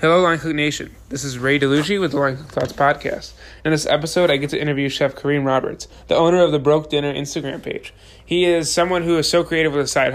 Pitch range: 140-160 Hz